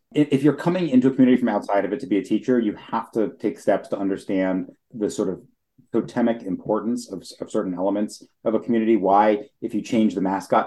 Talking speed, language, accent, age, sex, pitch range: 220 wpm, English, American, 30-49, male, 105-130 Hz